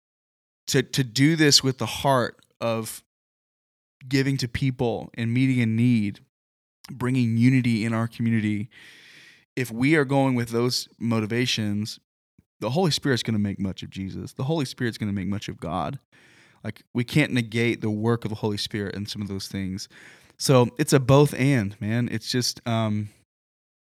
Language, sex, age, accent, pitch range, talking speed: English, male, 20-39, American, 105-130 Hz, 175 wpm